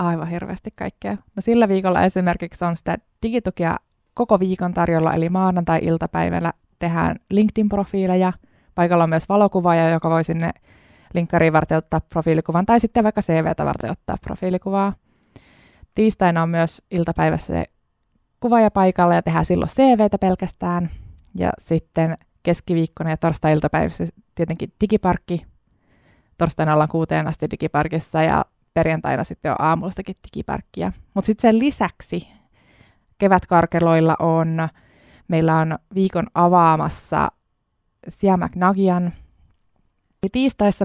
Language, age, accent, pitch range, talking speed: Finnish, 20-39, native, 160-190 Hz, 115 wpm